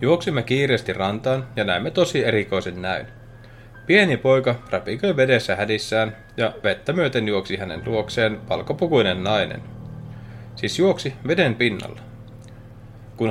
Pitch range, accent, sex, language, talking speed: 105-130 Hz, native, male, Finnish, 115 wpm